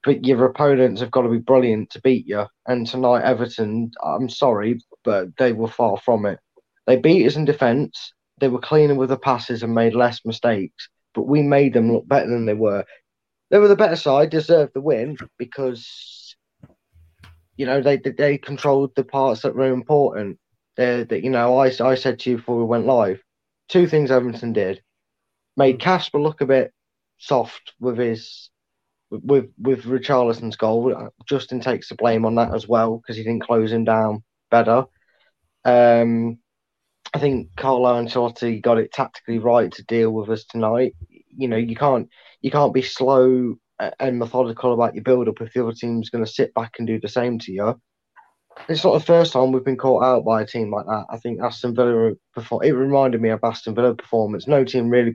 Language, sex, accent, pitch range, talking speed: English, male, British, 115-135 Hz, 195 wpm